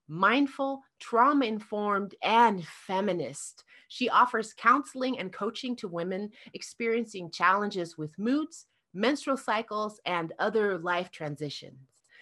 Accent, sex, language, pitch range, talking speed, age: American, female, English, 185-250 Hz, 105 wpm, 30-49